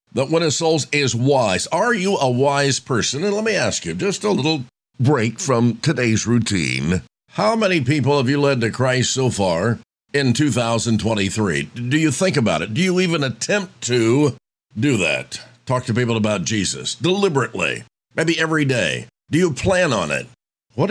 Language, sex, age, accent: English, male, 50-69, American